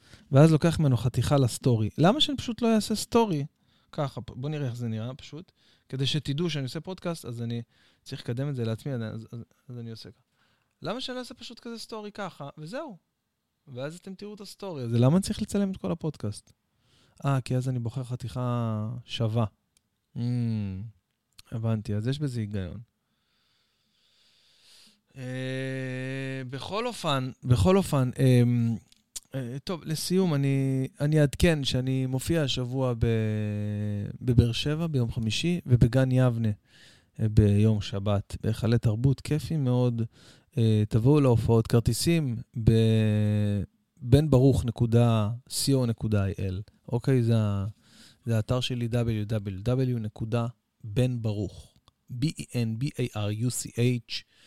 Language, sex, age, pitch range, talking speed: Hebrew, male, 20-39, 115-140 Hz, 120 wpm